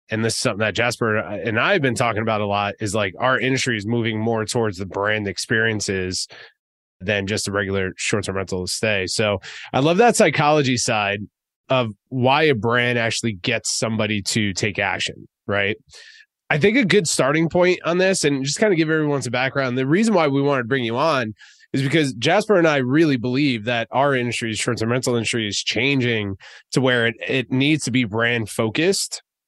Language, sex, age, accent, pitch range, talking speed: English, male, 20-39, American, 110-140 Hz, 200 wpm